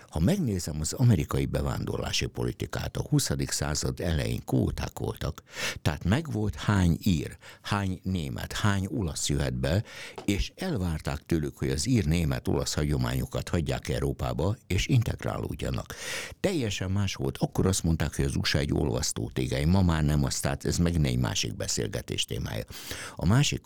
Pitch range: 70-100 Hz